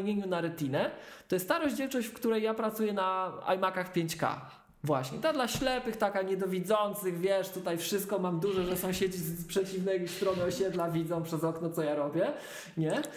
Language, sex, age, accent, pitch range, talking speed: Polish, male, 20-39, native, 155-200 Hz, 170 wpm